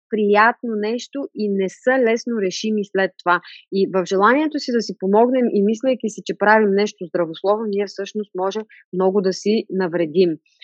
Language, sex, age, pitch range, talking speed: Bulgarian, female, 30-49, 195-250 Hz, 170 wpm